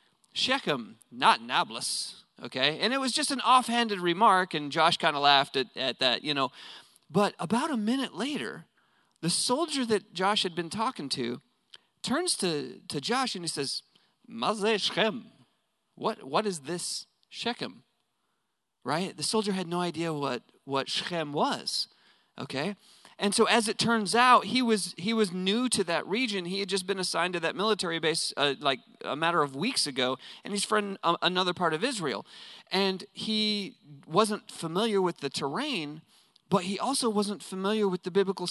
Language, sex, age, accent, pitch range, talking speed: English, male, 40-59, American, 150-205 Hz, 175 wpm